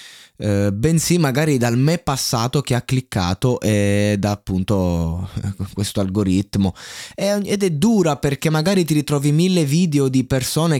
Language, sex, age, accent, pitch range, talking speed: Italian, male, 20-39, native, 100-130 Hz, 135 wpm